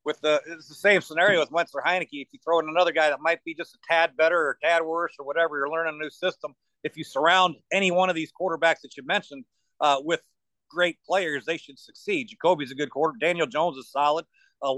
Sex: male